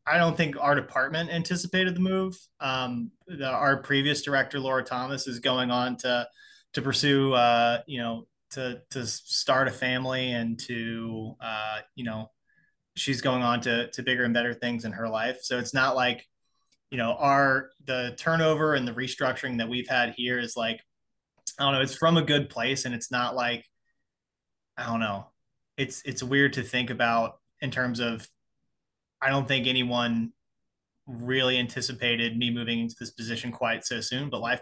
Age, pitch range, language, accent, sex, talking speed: 20-39, 120-145 Hz, English, American, male, 180 wpm